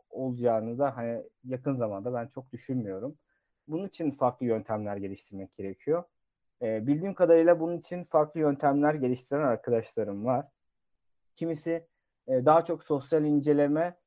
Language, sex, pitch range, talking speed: Turkish, male, 110-145 Hz, 130 wpm